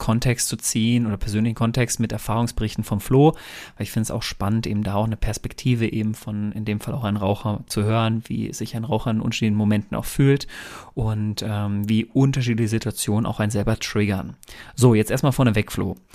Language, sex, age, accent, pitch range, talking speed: German, male, 30-49, German, 110-130 Hz, 200 wpm